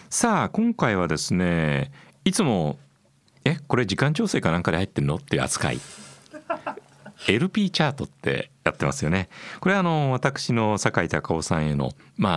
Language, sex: Japanese, male